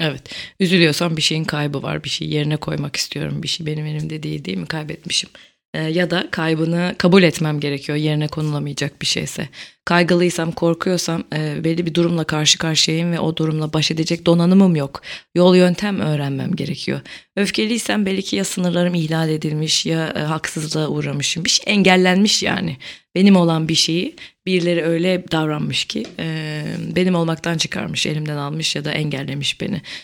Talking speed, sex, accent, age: 160 wpm, female, native, 30-49